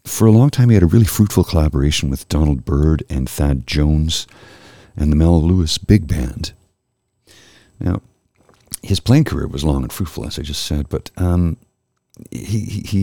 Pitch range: 75-100 Hz